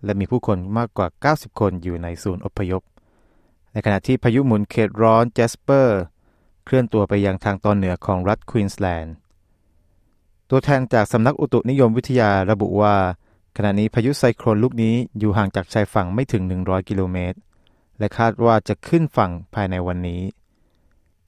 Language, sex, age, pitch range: Thai, male, 20-39, 100-125 Hz